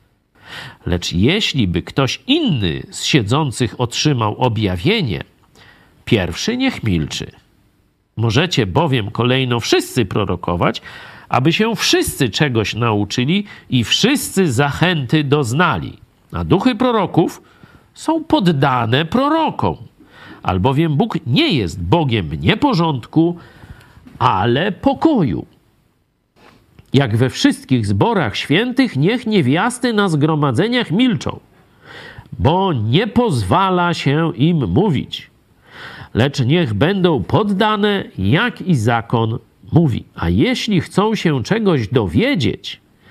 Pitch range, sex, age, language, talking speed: 125-200 Hz, male, 50-69, Polish, 95 wpm